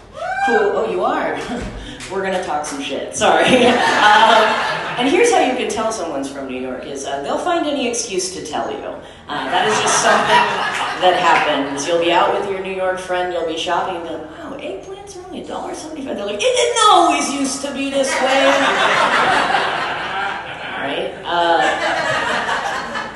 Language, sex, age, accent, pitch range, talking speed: English, female, 30-49, American, 160-265 Hz, 175 wpm